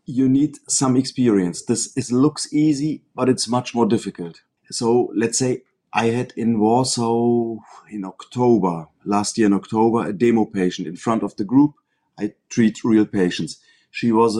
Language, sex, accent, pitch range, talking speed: Polish, male, German, 105-125 Hz, 165 wpm